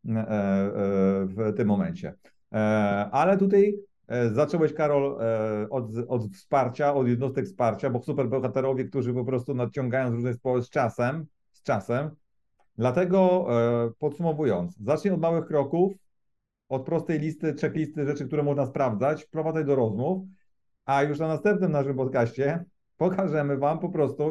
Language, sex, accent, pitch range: Polish, male, native, 110-150 Hz